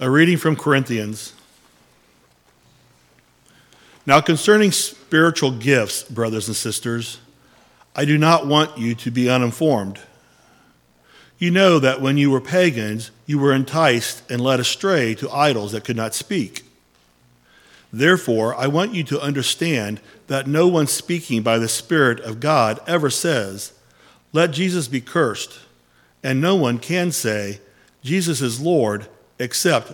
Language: English